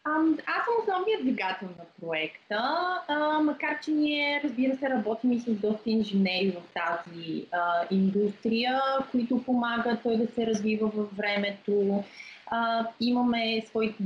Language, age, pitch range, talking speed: Bulgarian, 20-39, 200-240 Hz, 140 wpm